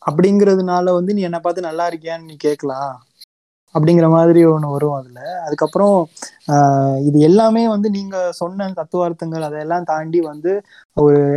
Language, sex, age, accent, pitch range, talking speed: Tamil, male, 20-39, native, 140-165 Hz, 130 wpm